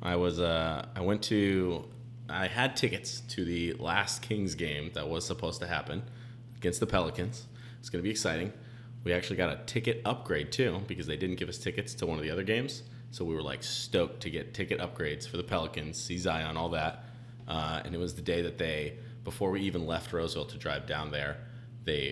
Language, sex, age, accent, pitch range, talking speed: English, male, 30-49, American, 90-120 Hz, 215 wpm